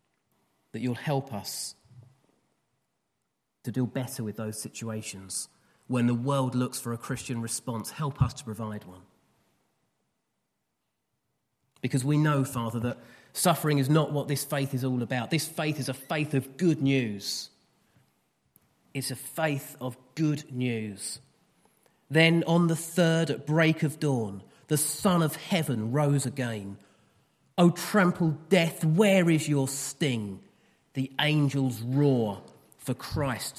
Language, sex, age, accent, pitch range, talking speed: English, male, 30-49, British, 120-150 Hz, 140 wpm